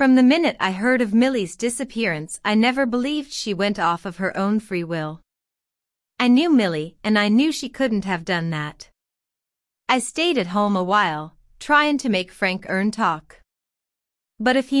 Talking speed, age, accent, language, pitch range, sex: 180 wpm, 30-49, American, English, 180-245 Hz, female